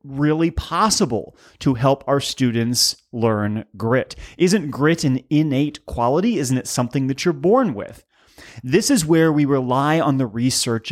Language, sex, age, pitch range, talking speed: English, male, 30-49, 115-150 Hz, 155 wpm